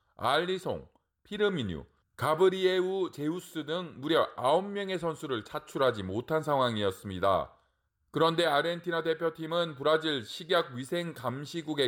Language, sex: Korean, male